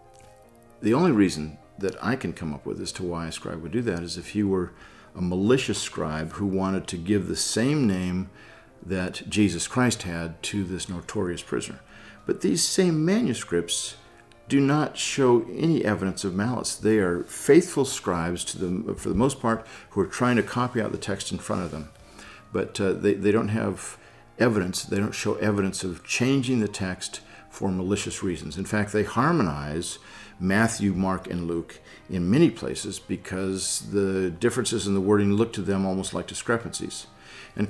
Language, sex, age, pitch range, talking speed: English, male, 50-69, 90-110 Hz, 180 wpm